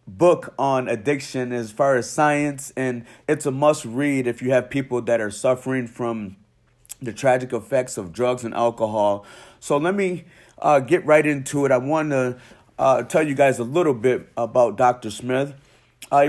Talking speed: 175 wpm